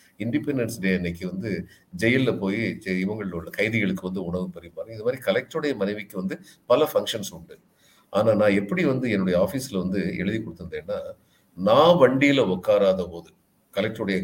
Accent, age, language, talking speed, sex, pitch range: native, 50-69, Tamil, 140 wpm, male, 100-170 Hz